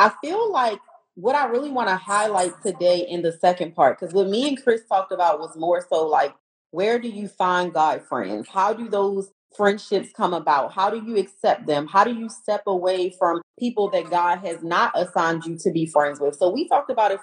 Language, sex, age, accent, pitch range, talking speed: English, female, 30-49, American, 175-225 Hz, 225 wpm